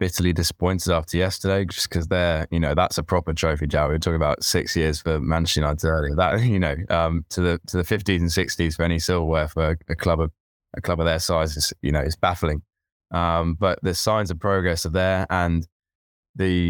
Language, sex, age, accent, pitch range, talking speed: English, male, 10-29, British, 80-90 Hz, 225 wpm